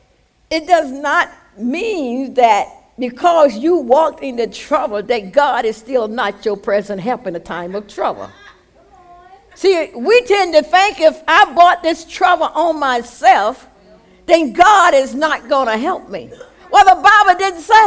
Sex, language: female, English